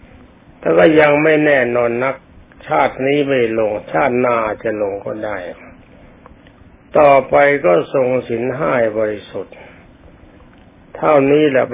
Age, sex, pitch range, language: 60-79, male, 115-145 Hz, Thai